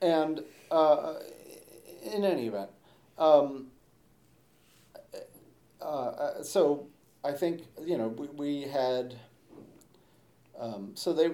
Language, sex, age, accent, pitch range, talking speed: English, male, 40-59, American, 110-140 Hz, 95 wpm